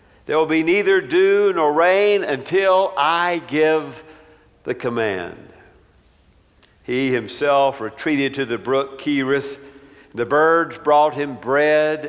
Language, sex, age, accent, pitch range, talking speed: English, male, 50-69, American, 140-170 Hz, 120 wpm